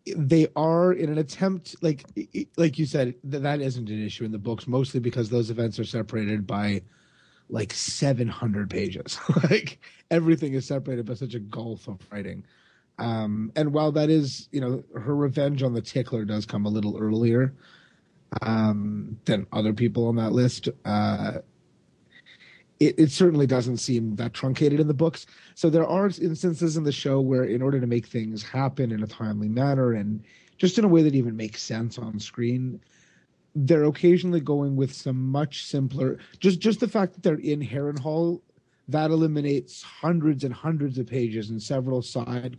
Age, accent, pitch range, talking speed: 30-49, American, 115-155 Hz, 180 wpm